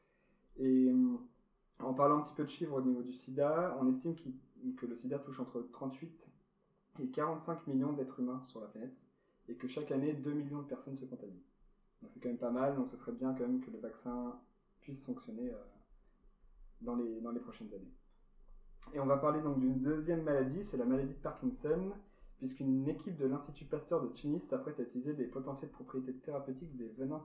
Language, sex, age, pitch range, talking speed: French, male, 20-39, 125-155 Hz, 200 wpm